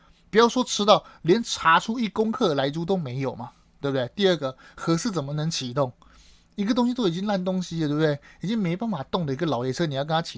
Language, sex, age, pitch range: Chinese, male, 30-49, 140-200 Hz